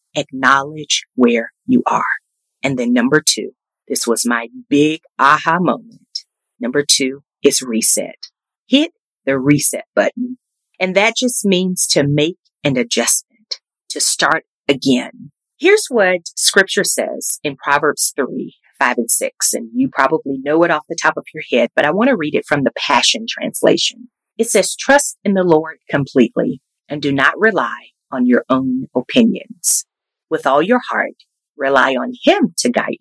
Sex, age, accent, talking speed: female, 40-59, American, 160 wpm